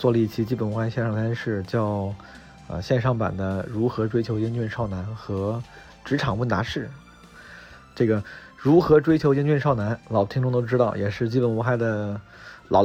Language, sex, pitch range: Chinese, male, 110-130 Hz